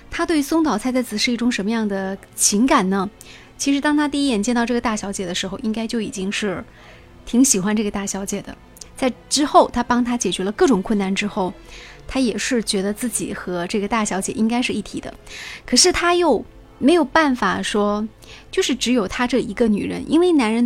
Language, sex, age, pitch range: Chinese, female, 20-39, 205-260 Hz